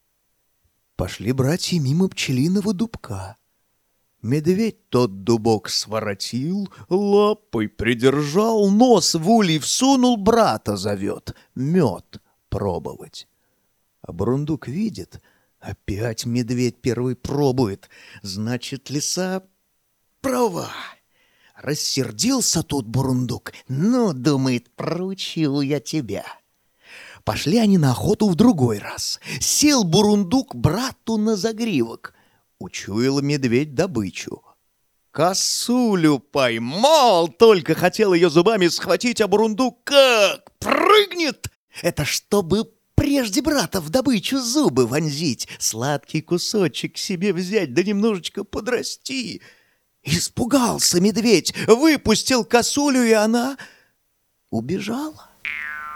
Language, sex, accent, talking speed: Russian, male, native, 90 wpm